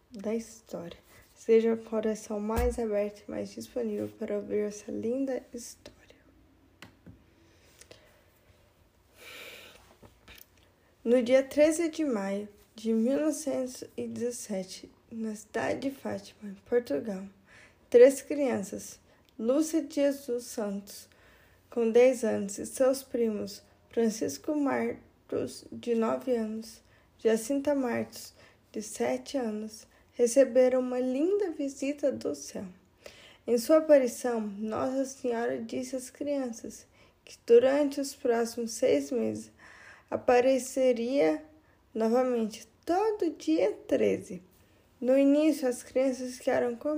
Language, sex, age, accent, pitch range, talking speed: Portuguese, female, 10-29, Brazilian, 220-280 Hz, 105 wpm